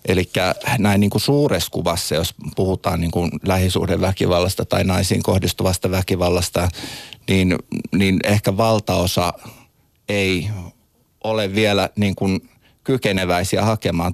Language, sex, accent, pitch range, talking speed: Finnish, male, native, 85-105 Hz, 85 wpm